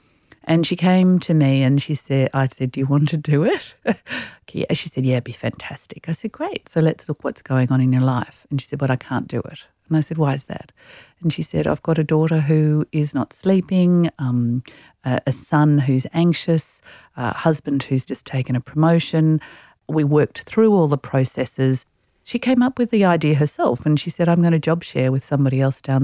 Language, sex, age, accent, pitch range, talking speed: English, female, 40-59, Australian, 135-170 Hz, 225 wpm